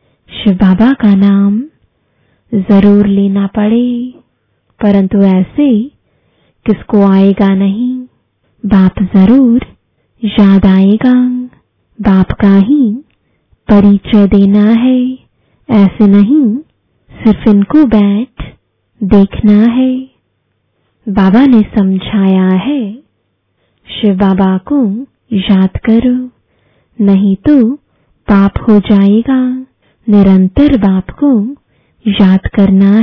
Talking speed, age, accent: 85 wpm, 20-39, Indian